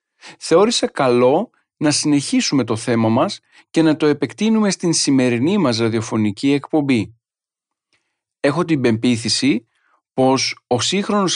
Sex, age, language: male, 40-59, Greek